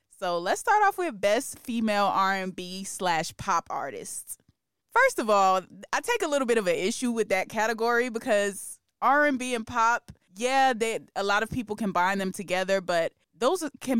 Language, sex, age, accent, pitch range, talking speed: English, female, 20-39, American, 180-230 Hz, 170 wpm